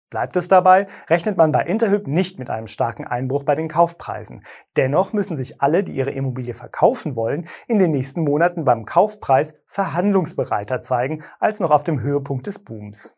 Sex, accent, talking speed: male, German, 180 wpm